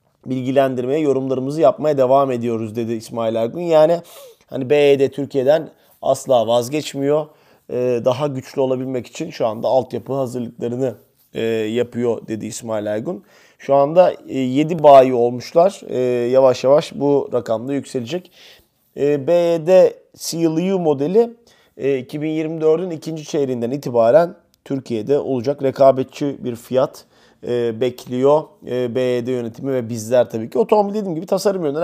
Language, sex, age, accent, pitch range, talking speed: Turkish, male, 30-49, native, 120-150 Hz, 115 wpm